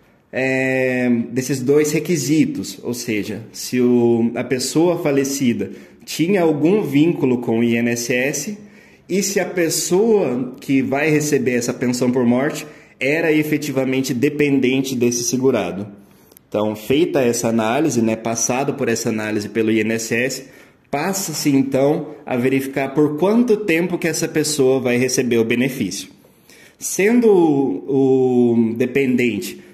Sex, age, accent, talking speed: male, 20-39, Brazilian, 125 wpm